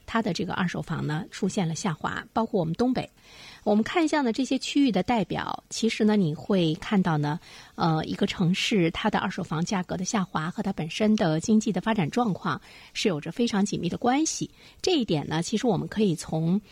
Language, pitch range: Chinese, 170-225 Hz